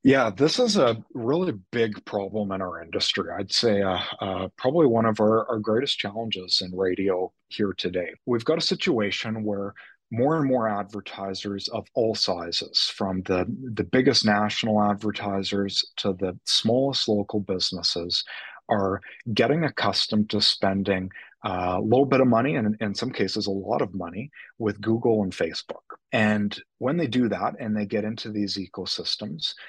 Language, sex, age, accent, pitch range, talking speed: English, male, 30-49, American, 100-115 Hz, 165 wpm